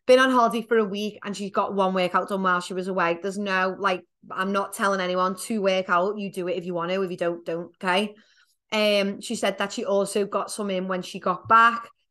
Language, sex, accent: English, female, British